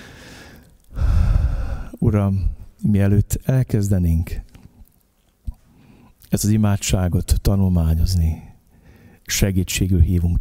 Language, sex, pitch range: Hungarian, male, 90-115 Hz